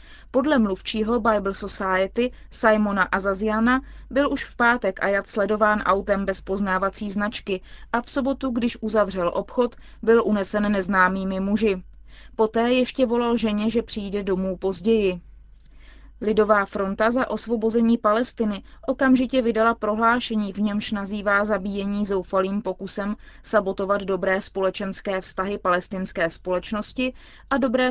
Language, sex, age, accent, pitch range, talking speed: Czech, female, 20-39, native, 195-230 Hz, 120 wpm